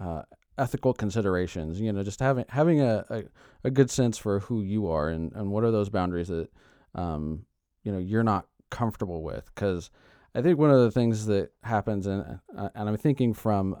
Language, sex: English, male